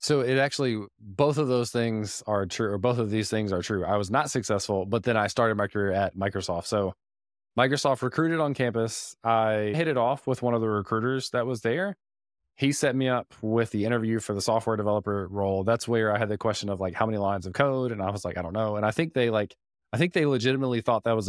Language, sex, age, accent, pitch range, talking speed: English, male, 20-39, American, 100-125 Hz, 250 wpm